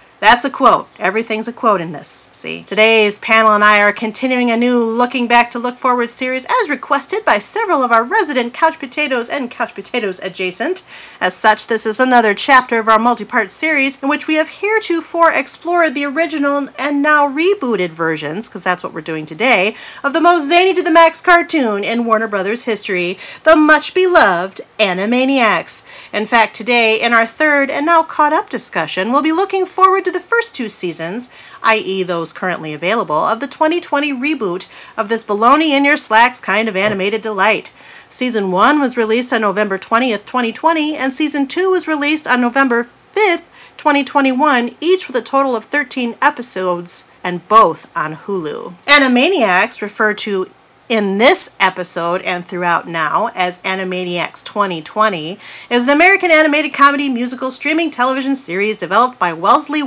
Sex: female